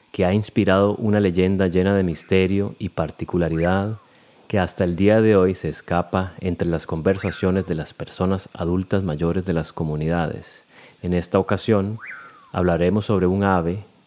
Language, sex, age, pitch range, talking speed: Spanish, male, 30-49, 90-110 Hz, 155 wpm